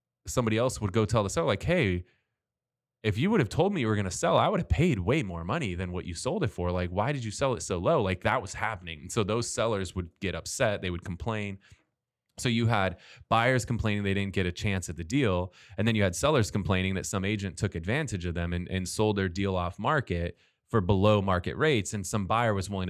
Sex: male